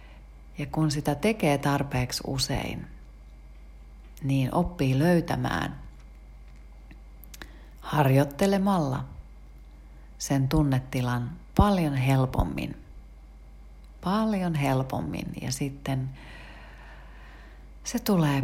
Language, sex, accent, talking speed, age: Finnish, female, native, 65 wpm, 30-49